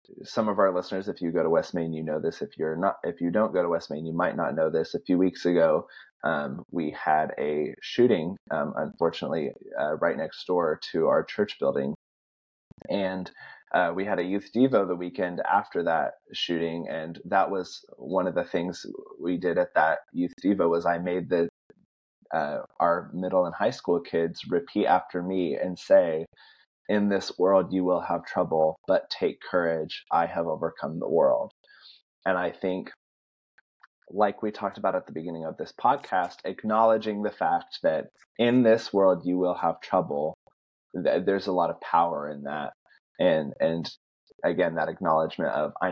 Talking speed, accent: 185 wpm, American